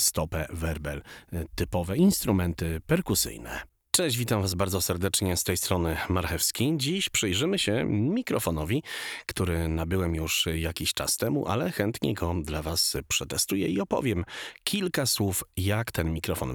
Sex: male